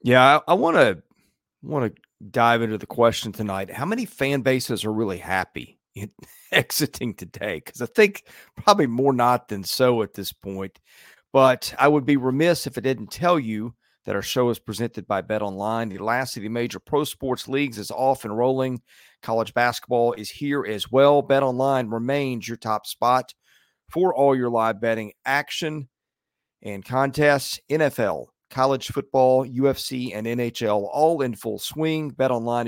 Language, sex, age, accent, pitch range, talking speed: English, male, 40-59, American, 110-135 Hz, 175 wpm